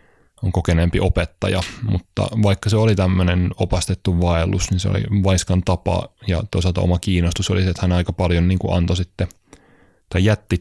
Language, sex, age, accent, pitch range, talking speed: Finnish, male, 20-39, native, 85-100 Hz, 175 wpm